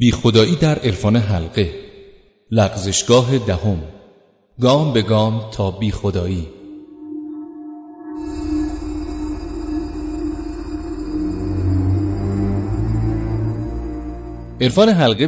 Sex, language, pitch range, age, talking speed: male, Persian, 100-140 Hz, 30-49, 55 wpm